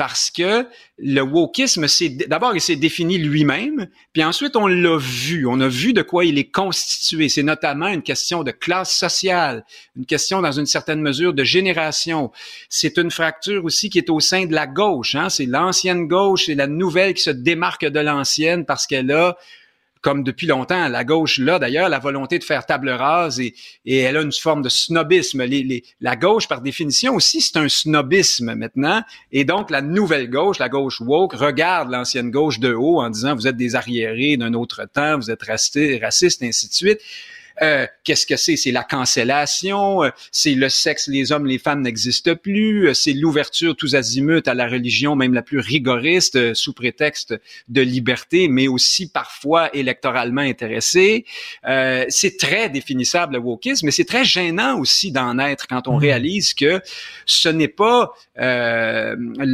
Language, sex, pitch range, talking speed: French, male, 130-180 Hz, 185 wpm